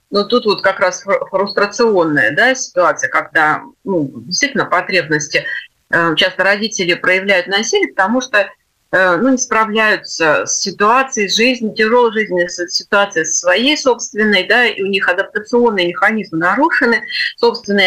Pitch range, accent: 185-240 Hz, native